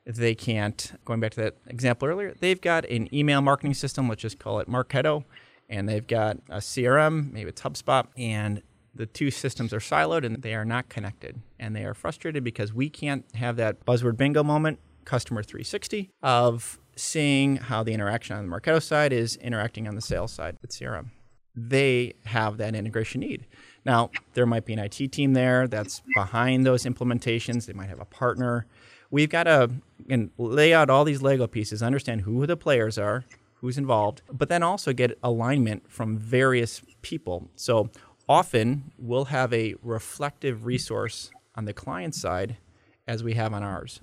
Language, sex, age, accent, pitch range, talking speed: English, male, 30-49, American, 110-135 Hz, 180 wpm